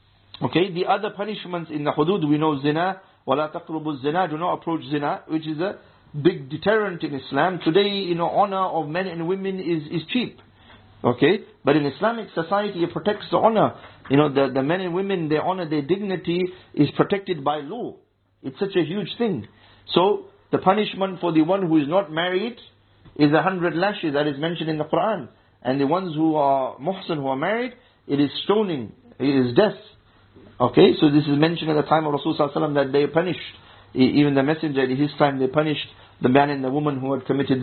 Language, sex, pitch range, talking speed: English, male, 140-185 Hz, 205 wpm